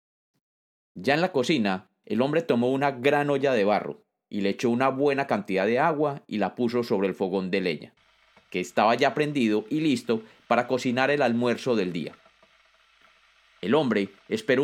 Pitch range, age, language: 120-160 Hz, 30-49, Spanish